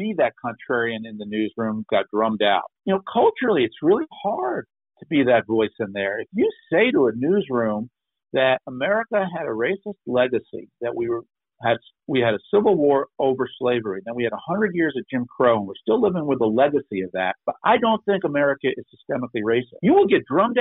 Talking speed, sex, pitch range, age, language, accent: 215 wpm, male, 115-180 Hz, 50-69, English, American